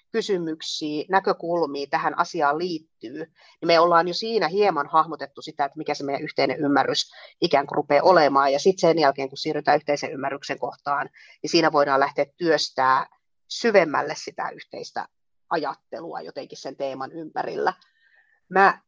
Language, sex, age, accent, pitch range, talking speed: Finnish, female, 30-49, native, 145-185 Hz, 145 wpm